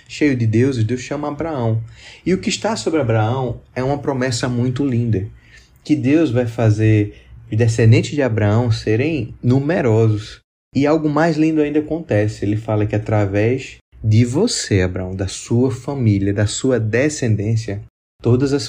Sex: male